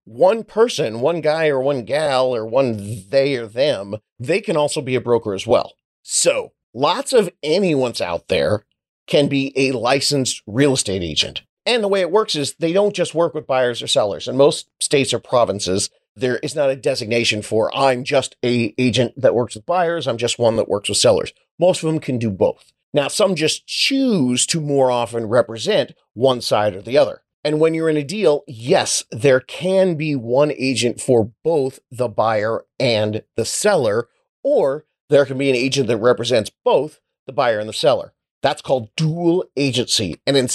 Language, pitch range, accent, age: English, 120-170 Hz, American, 40-59